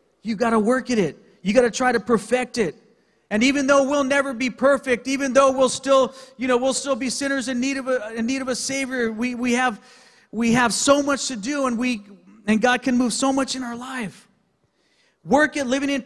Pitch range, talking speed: 190-255 Hz, 235 wpm